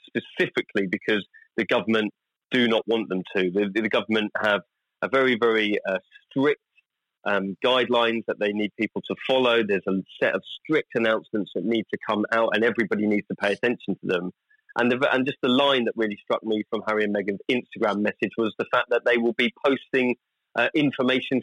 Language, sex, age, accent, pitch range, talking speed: English, male, 30-49, British, 110-130 Hz, 195 wpm